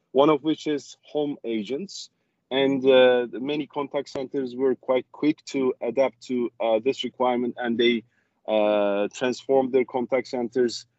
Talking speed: 155 wpm